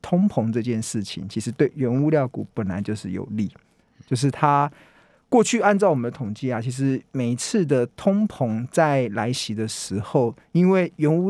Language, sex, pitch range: Chinese, male, 120-165 Hz